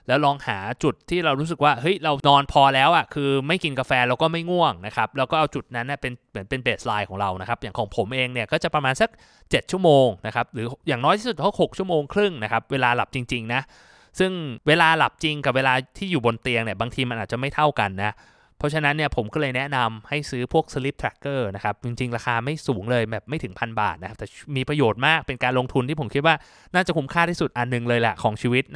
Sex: male